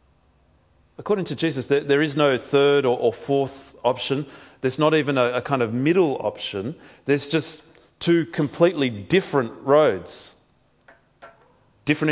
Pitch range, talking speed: 115-155 Hz, 125 wpm